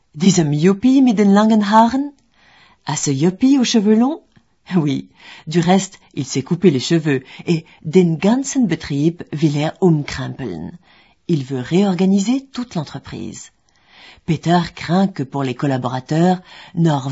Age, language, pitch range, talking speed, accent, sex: 40-59, French, 135-195 Hz, 155 wpm, French, female